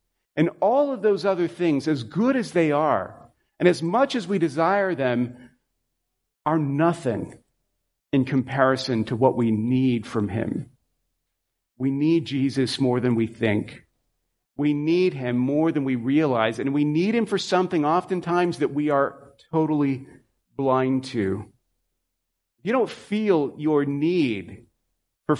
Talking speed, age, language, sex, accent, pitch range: 145 wpm, 40-59, English, male, American, 120-165 Hz